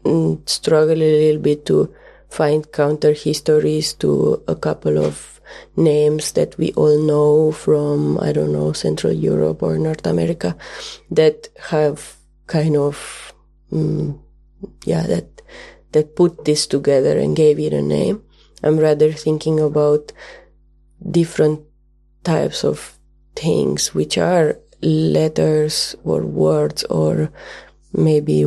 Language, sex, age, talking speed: English, female, 20-39, 120 wpm